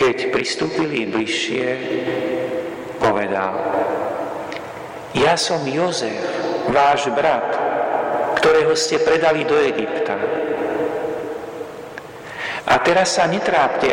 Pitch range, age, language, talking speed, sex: 120-165 Hz, 50-69, Slovak, 80 wpm, male